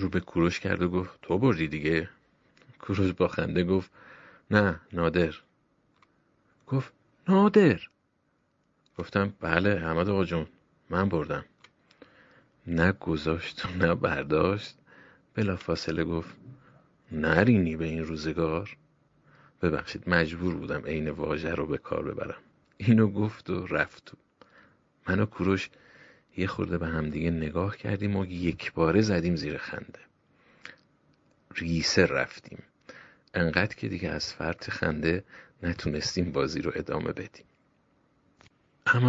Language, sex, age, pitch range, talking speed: Persian, male, 50-69, 85-105 Hz, 115 wpm